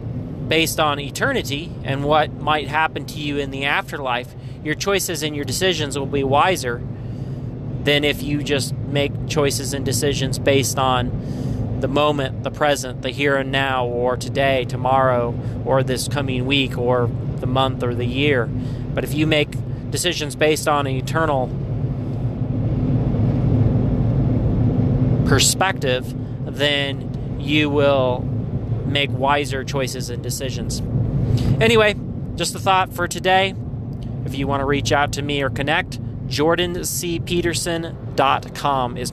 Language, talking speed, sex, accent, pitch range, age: English, 135 wpm, male, American, 125-145 Hz, 30-49